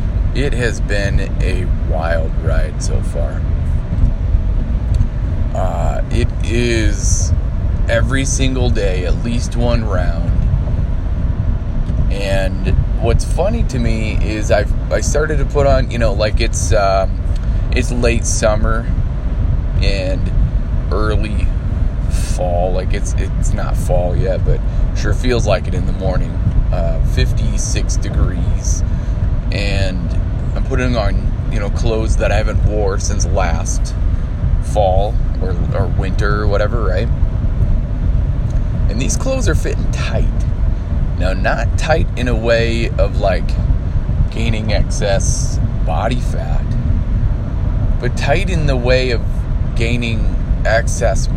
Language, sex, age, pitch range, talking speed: English, male, 20-39, 85-110 Hz, 120 wpm